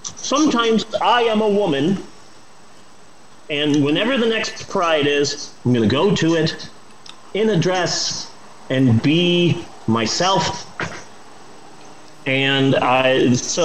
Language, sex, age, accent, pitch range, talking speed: English, male, 30-49, American, 115-155 Hz, 115 wpm